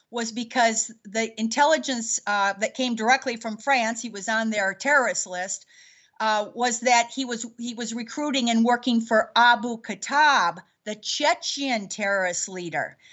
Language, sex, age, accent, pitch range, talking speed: English, female, 40-59, American, 220-295 Hz, 150 wpm